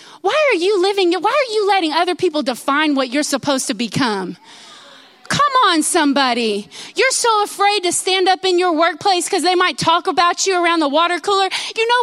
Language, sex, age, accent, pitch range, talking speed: English, female, 30-49, American, 270-390 Hz, 200 wpm